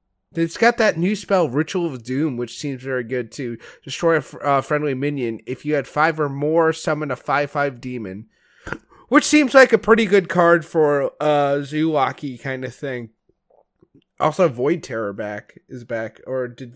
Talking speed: 185 wpm